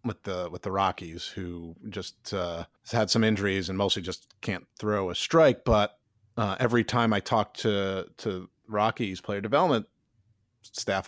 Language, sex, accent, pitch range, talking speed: English, male, American, 100-125 Hz, 170 wpm